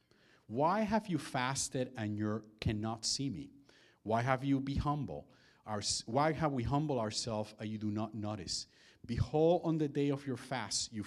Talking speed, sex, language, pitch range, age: 180 wpm, male, English, 110-140 Hz, 40-59